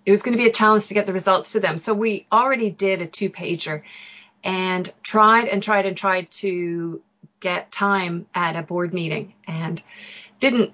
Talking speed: 190 wpm